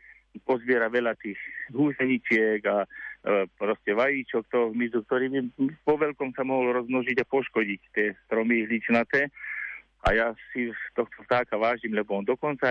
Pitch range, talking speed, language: 115-135 Hz, 140 wpm, Slovak